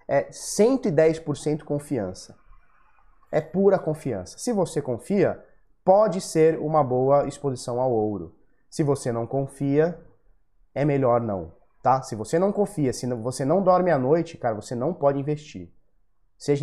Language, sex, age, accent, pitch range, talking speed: Portuguese, male, 20-39, Brazilian, 120-160 Hz, 145 wpm